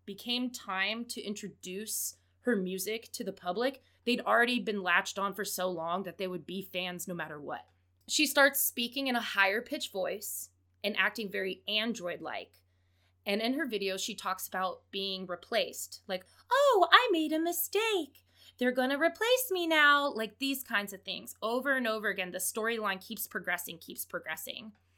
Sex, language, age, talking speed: female, English, 20-39, 175 wpm